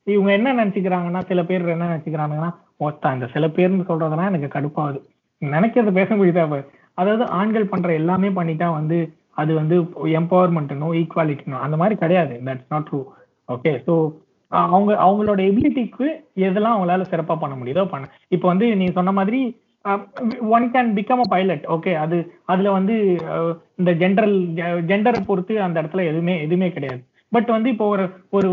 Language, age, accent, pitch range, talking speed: Tamil, 20-39, native, 170-225 Hz, 155 wpm